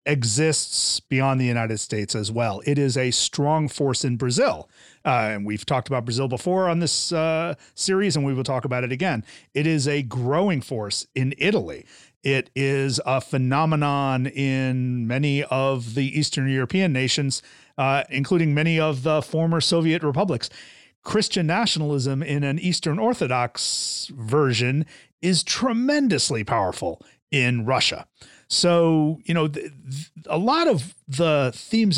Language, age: English, 40-59